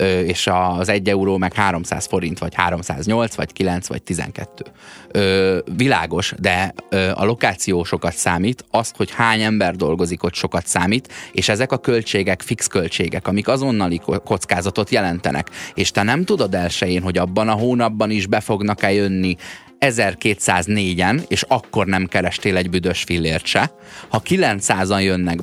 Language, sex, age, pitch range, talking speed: Hungarian, male, 20-39, 90-110 Hz, 150 wpm